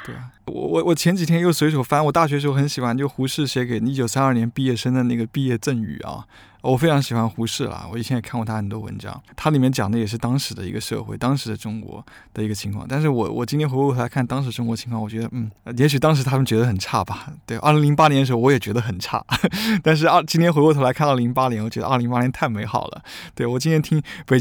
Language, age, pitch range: Chinese, 20-39, 115-145 Hz